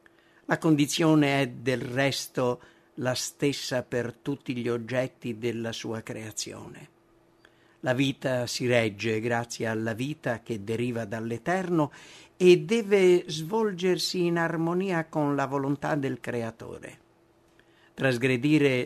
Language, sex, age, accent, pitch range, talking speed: English, male, 50-69, Italian, 120-160 Hz, 110 wpm